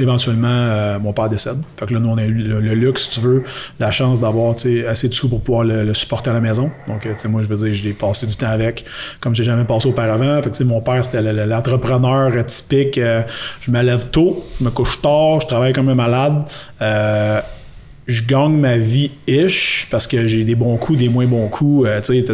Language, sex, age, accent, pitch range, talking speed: French, male, 30-49, Canadian, 115-130 Hz, 245 wpm